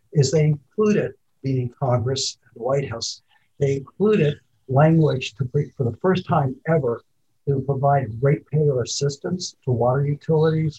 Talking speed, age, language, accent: 150 wpm, 60-79, English, American